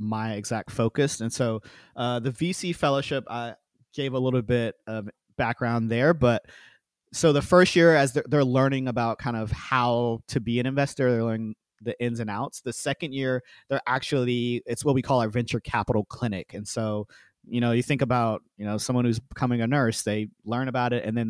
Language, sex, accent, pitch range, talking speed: English, male, American, 110-130 Hz, 210 wpm